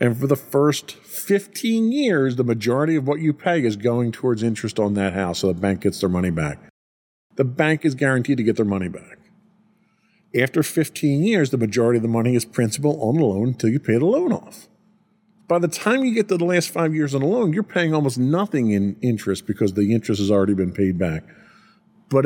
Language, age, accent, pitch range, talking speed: English, 40-59, American, 110-180 Hz, 220 wpm